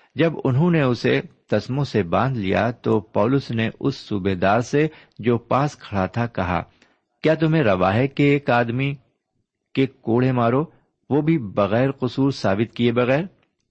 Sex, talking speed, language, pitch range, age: male, 160 wpm, Urdu, 100-140 Hz, 50-69